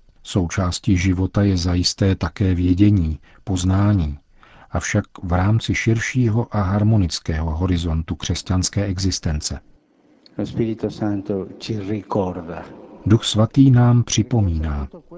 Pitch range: 90-105 Hz